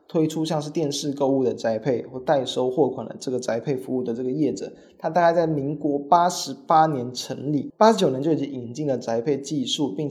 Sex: male